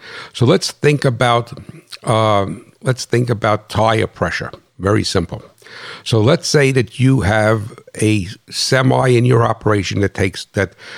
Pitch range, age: 105-125 Hz, 60-79